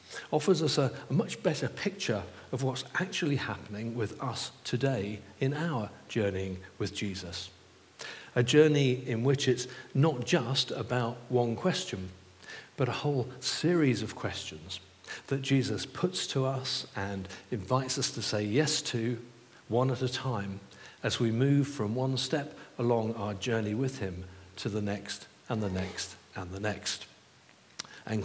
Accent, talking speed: British, 155 wpm